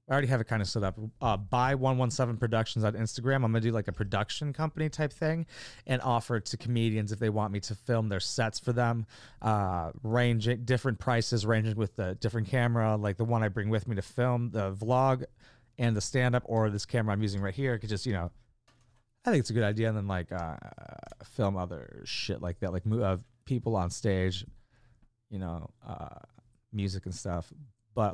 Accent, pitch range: American, 105-125 Hz